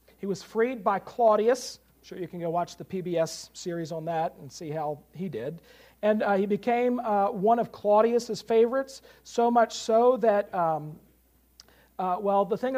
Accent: American